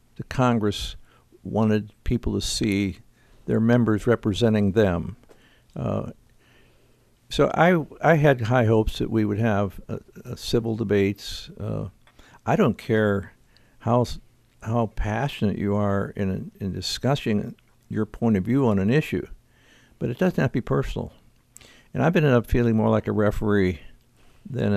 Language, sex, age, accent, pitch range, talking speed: English, male, 60-79, American, 105-120 Hz, 145 wpm